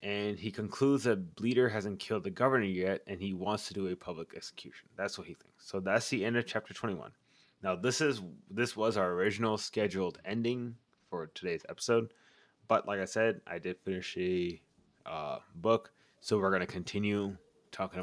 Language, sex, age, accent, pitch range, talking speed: English, male, 20-39, American, 95-110 Hz, 190 wpm